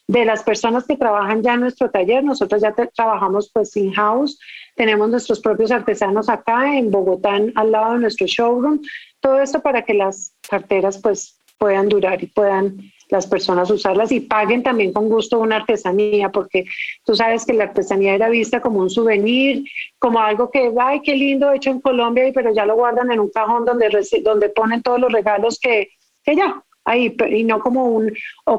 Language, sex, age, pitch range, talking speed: English, female, 40-59, 210-250 Hz, 195 wpm